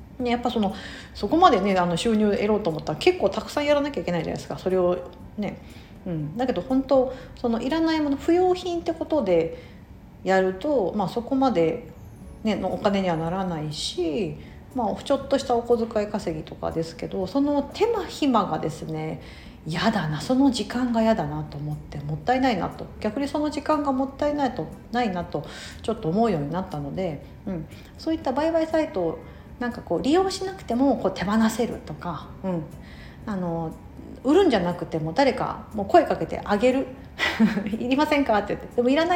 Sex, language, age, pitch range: female, Japanese, 50-69, 170-265 Hz